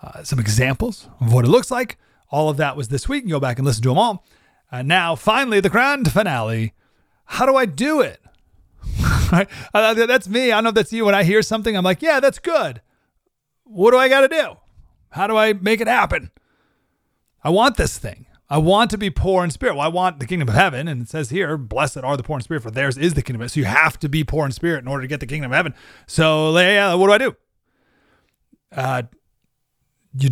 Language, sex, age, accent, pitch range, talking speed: English, male, 30-49, American, 115-185 Hz, 240 wpm